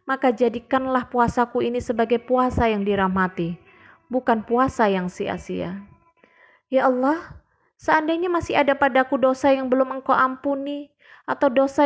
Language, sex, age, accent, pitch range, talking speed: Indonesian, female, 20-39, native, 245-305 Hz, 125 wpm